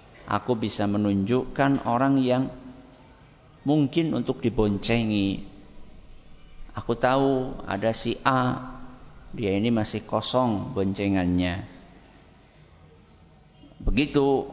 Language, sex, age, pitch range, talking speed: Malay, male, 50-69, 95-125 Hz, 80 wpm